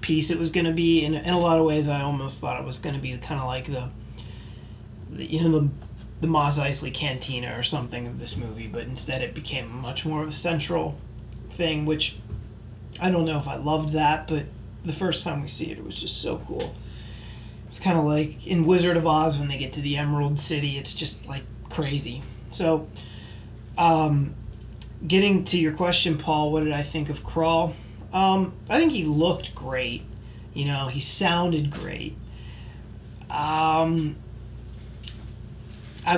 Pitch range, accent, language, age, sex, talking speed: 115-160 Hz, American, English, 30-49, male, 185 wpm